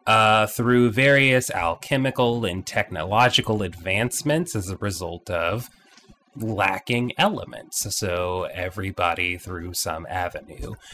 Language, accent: English, American